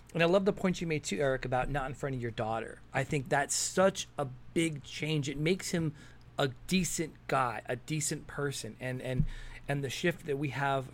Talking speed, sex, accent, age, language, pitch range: 220 wpm, male, American, 30-49, English, 130-155 Hz